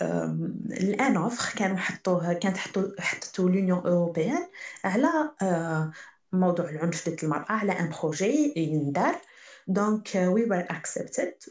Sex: female